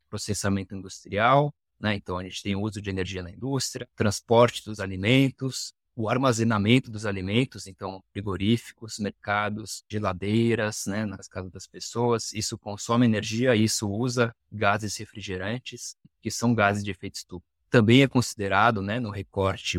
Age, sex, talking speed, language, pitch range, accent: 20-39, male, 145 wpm, Portuguese, 100-125 Hz, Brazilian